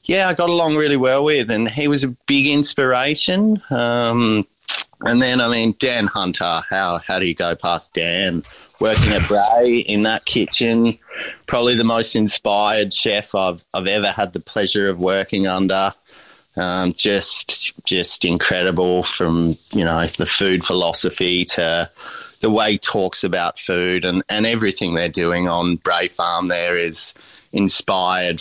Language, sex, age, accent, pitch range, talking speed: English, male, 30-49, Australian, 90-115 Hz, 160 wpm